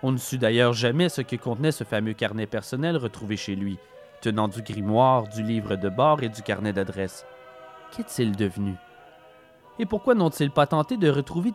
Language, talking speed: French, 180 wpm